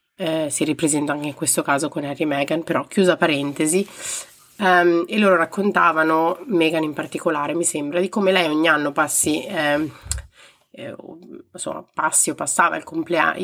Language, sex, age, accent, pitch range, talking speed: Italian, female, 30-49, native, 150-180 Hz, 170 wpm